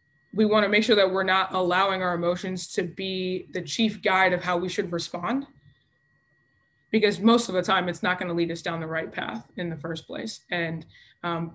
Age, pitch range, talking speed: 20-39, 170-200 Hz, 210 wpm